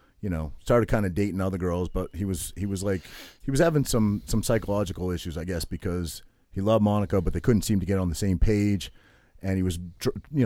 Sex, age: male, 30-49